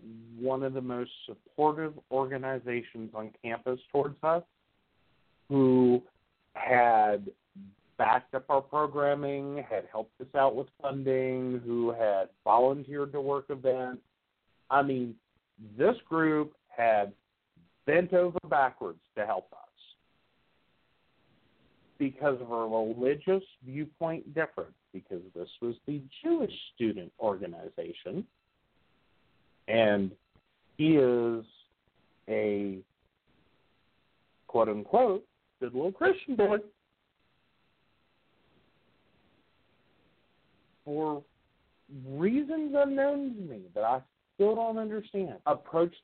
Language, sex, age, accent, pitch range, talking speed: English, male, 50-69, American, 115-160 Hz, 95 wpm